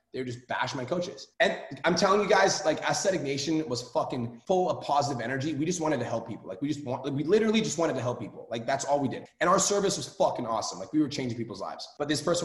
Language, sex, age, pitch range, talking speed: English, male, 20-39, 120-160 Hz, 280 wpm